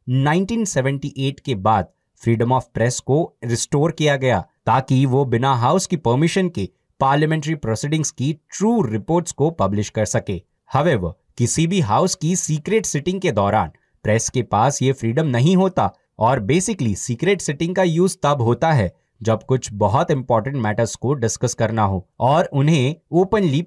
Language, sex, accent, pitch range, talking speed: Hindi, male, native, 115-160 Hz, 70 wpm